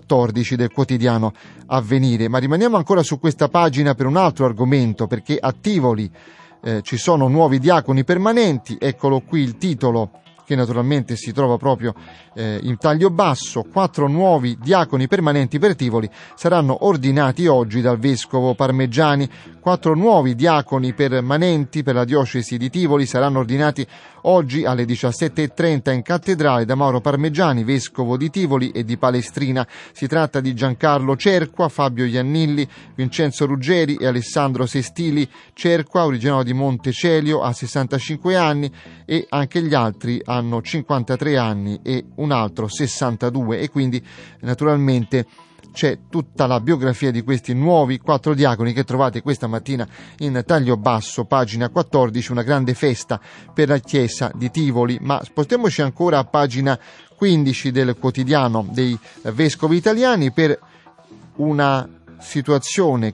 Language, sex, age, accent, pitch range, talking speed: Italian, male, 30-49, native, 125-155 Hz, 140 wpm